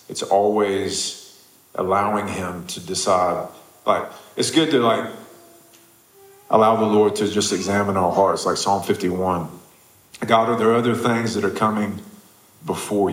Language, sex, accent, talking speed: Russian, male, American, 140 wpm